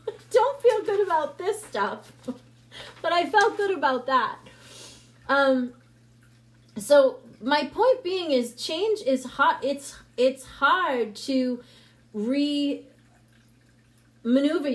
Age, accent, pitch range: 30-49, American, 215-280 Hz